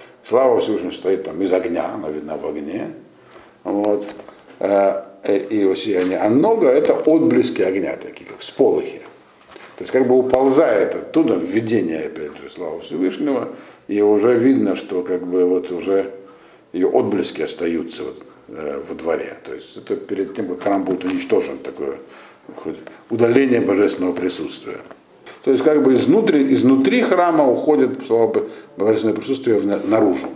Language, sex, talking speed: Russian, male, 145 wpm